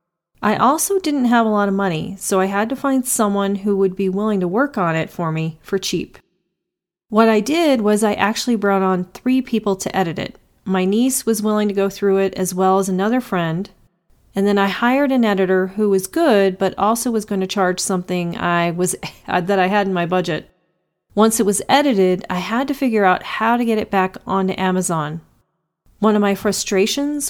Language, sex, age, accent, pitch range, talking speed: English, female, 40-59, American, 185-225 Hz, 210 wpm